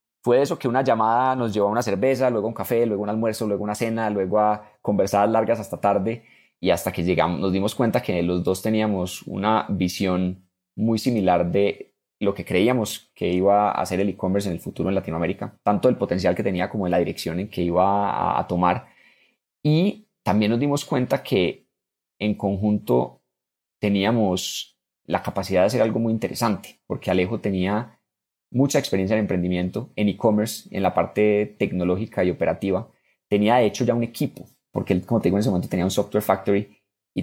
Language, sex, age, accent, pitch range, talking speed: Spanish, male, 20-39, Colombian, 90-110 Hz, 190 wpm